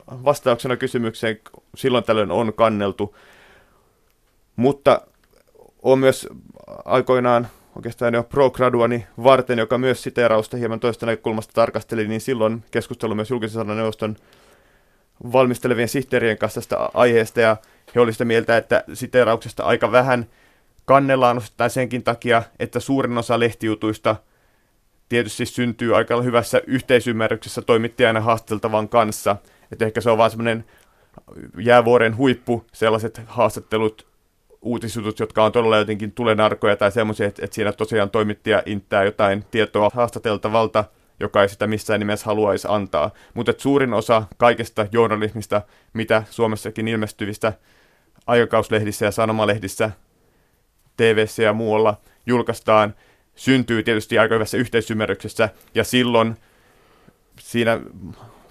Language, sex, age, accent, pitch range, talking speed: Finnish, male, 30-49, native, 110-120 Hz, 120 wpm